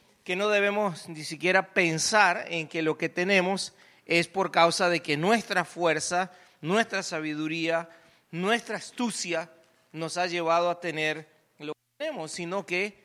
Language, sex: English, male